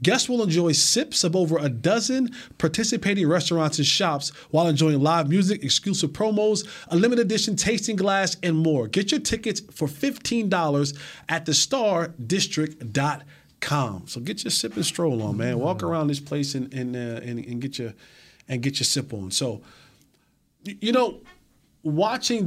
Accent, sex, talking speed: American, male, 160 wpm